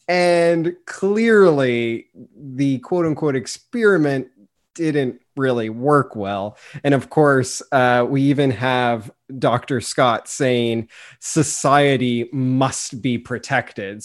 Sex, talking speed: male, 100 wpm